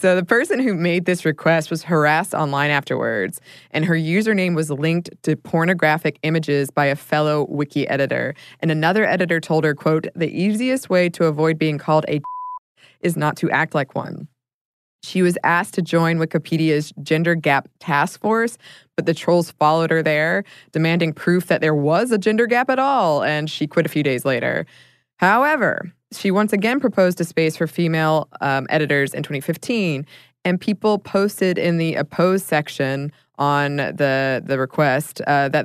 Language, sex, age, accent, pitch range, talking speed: English, female, 20-39, American, 150-185 Hz, 175 wpm